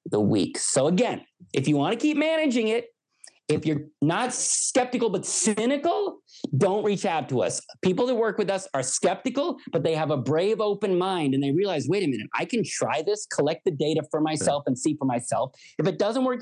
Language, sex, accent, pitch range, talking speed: English, male, American, 150-220 Hz, 215 wpm